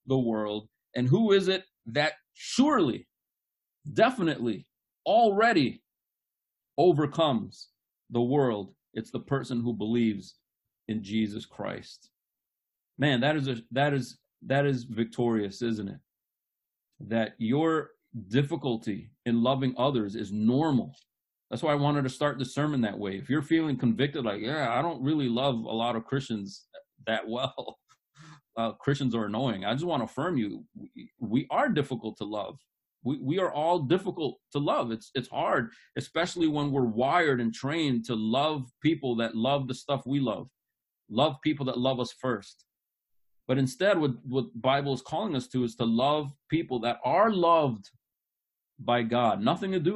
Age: 30-49